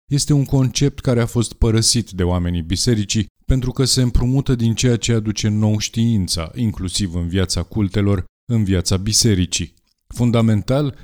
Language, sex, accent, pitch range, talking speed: Romanian, male, native, 90-110 Hz, 150 wpm